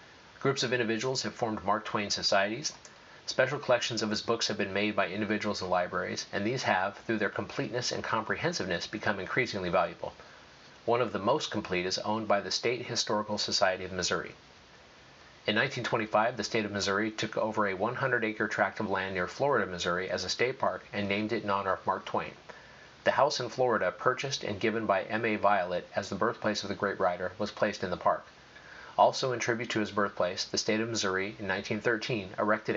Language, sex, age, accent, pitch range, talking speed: English, male, 40-59, American, 100-115 Hz, 200 wpm